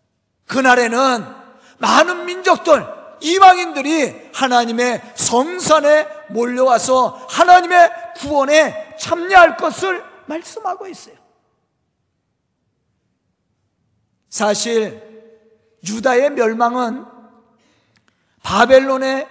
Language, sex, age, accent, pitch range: Korean, male, 40-59, native, 225-310 Hz